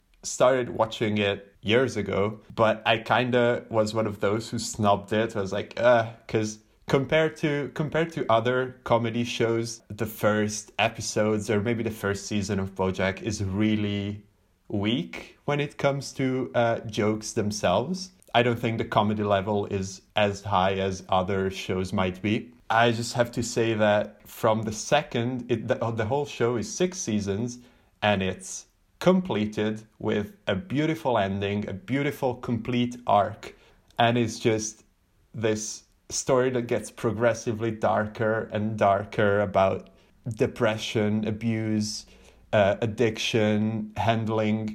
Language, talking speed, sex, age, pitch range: English, 140 wpm, male, 30-49, 105-120 Hz